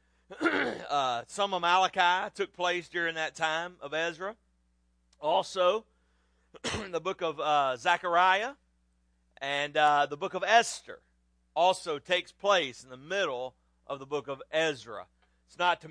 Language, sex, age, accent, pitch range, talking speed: English, male, 40-59, American, 130-190 Hz, 140 wpm